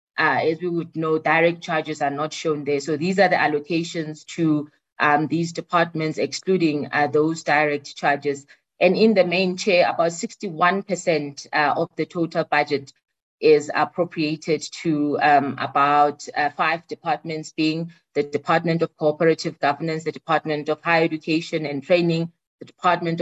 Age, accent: 20-39, South African